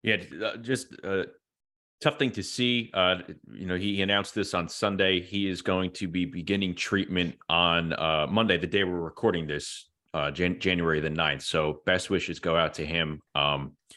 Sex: male